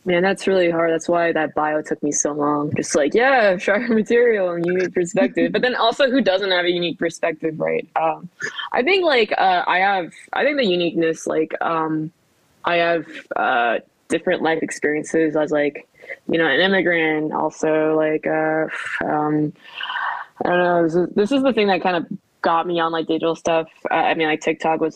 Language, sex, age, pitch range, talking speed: English, female, 20-39, 160-195 Hz, 190 wpm